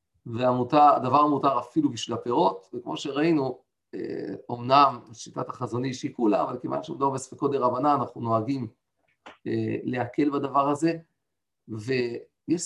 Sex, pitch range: male, 125-155 Hz